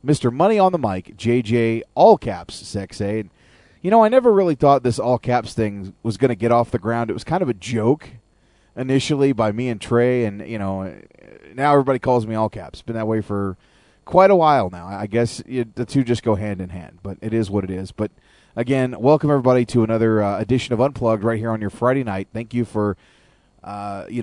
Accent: American